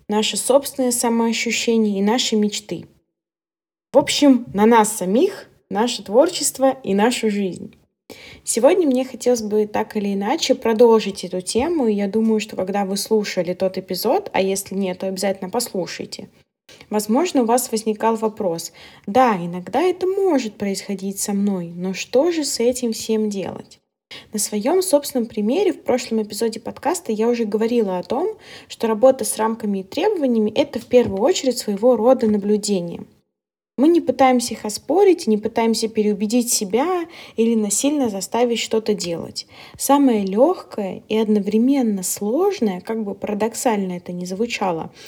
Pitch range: 205-255 Hz